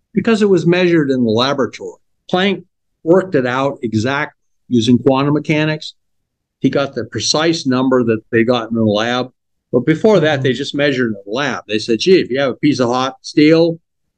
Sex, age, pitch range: male, 50-69, 120-155 Hz